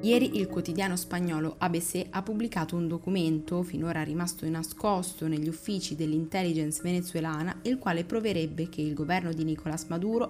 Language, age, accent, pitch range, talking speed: Italian, 20-39, native, 160-195 Hz, 145 wpm